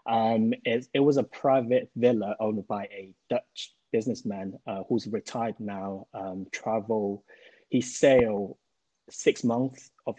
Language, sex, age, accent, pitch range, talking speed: English, male, 20-39, British, 100-120 Hz, 135 wpm